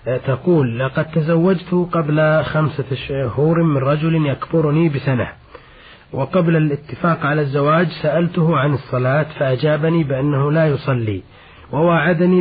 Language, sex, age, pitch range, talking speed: Arabic, male, 30-49, 140-165 Hz, 105 wpm